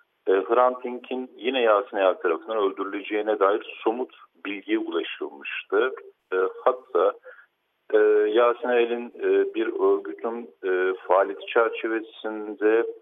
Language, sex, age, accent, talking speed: Turkish, male, 50-69, native, 80 wpm